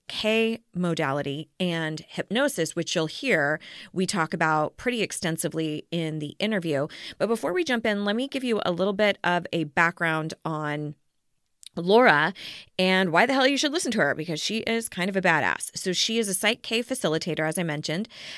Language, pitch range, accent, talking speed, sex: English, 160-210 Hz, American, 185 wpm, female